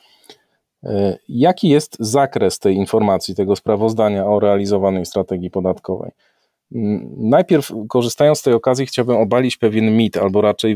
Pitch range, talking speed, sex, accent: 105-135 Hz, 125 wpm, male, native